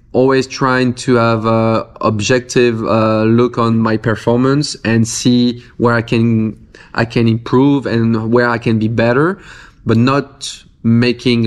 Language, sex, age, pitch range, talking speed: English, male, 20-39, 110-125 Hz, 150 wpm